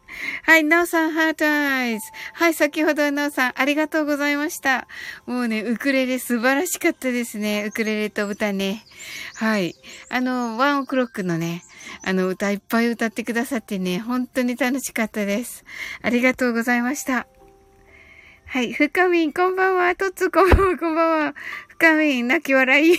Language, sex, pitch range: Japanese, female, 230-315 Hz